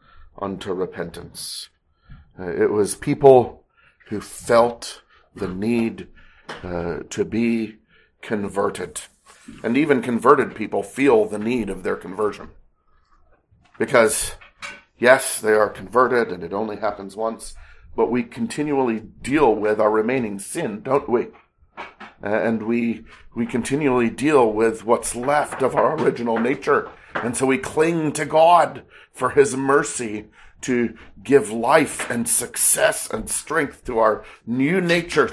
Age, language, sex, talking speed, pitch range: 40-59, English, male, 130 wpm, 110-140 Hz